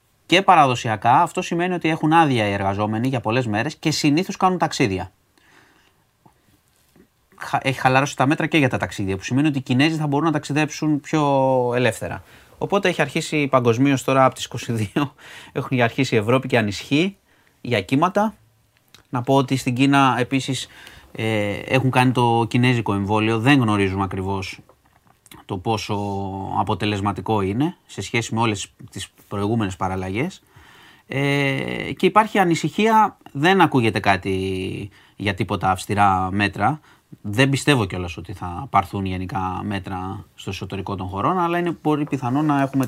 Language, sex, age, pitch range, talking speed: Greek, male, 30-49, 100-145 Hz, 145 wpm